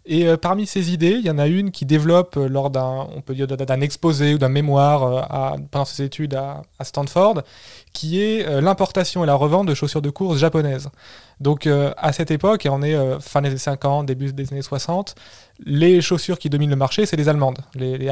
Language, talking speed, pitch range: French, 235 wpm, 140-175 Hz